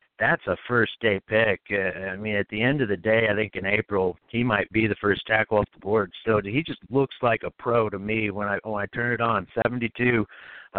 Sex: male